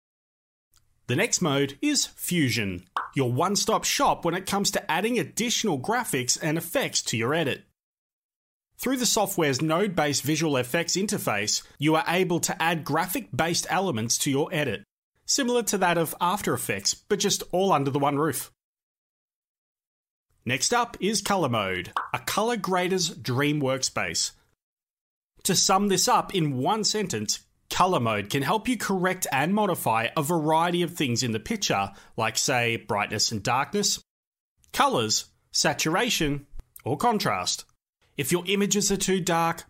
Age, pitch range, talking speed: 30-49, 130-195 Hz, 145 wpm